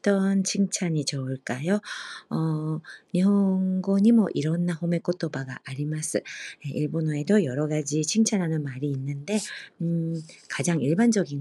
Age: 40-59